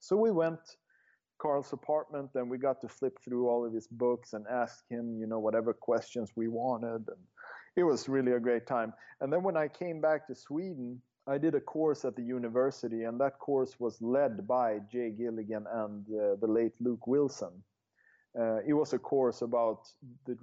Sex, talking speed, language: male, 200 wpm, English